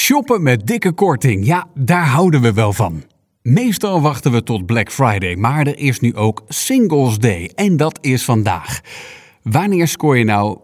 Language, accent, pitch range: Dutch, Dutch, 105-155 Hz